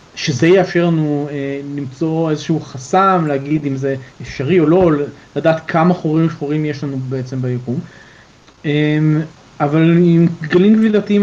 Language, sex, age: Hebrew, male, 30-49